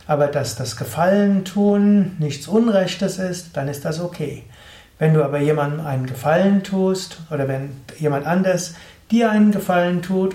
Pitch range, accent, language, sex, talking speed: 145-180 Hz, German, German, male, 155 wpm